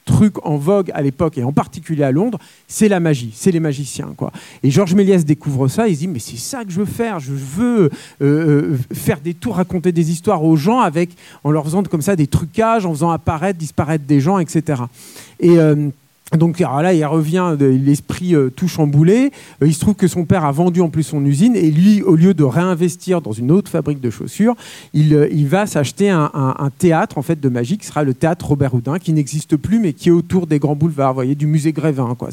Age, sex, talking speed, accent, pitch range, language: 40-59, male, 240 wpm, French, 145-185 Hz, French